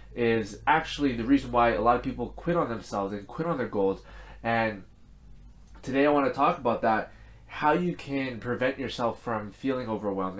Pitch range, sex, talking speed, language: 110-140 Hz, male, 190 wpm, English